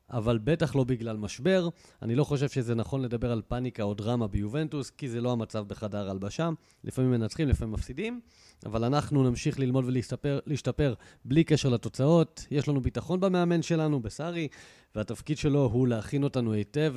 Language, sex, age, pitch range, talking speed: Hebrew, male, 30-49, 115-150 Hz, 165 wpm